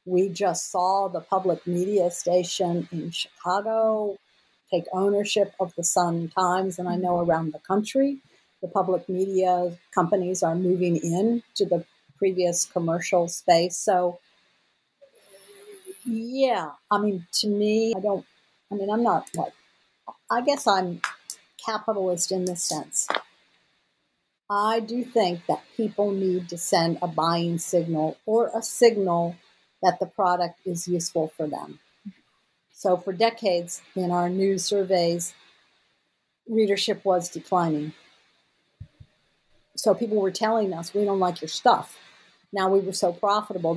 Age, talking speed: 50-69, 135 wpm